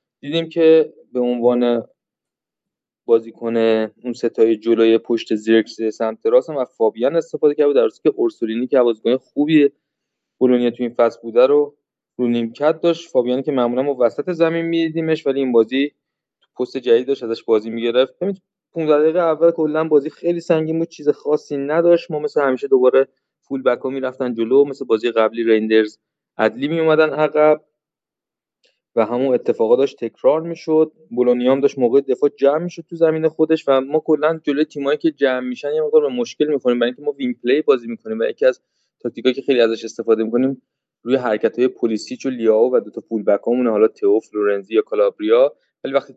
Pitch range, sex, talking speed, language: 120-160 Hz, male, 175 wpm, Persian